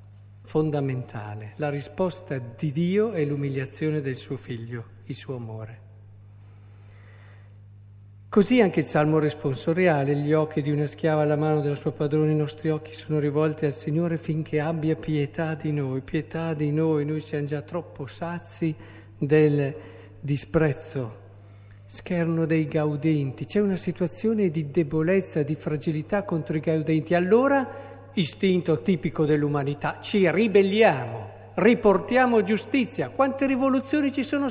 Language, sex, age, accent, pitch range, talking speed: Italian, male, 50-69, native, 115-165 Hz, 130 wpm